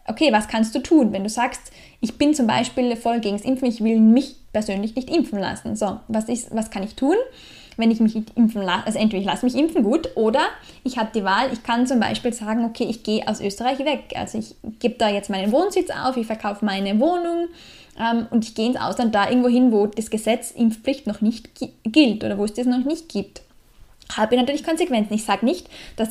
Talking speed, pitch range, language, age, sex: 230 wpm, 215-260 Hz, German, 10-29, female